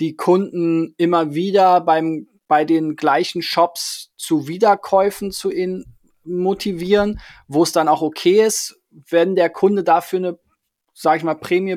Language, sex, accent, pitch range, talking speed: German, male, German, 145-170 Hz, 150 wpm